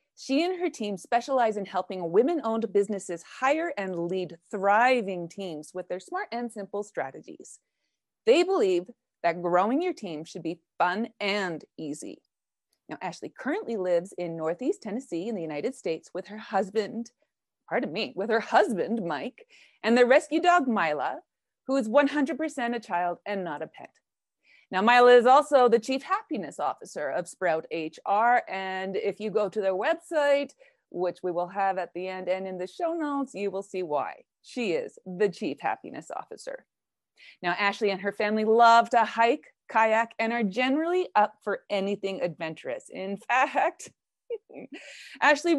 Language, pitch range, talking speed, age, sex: English, 190-280 Hz, 165 wpm, 30-49, female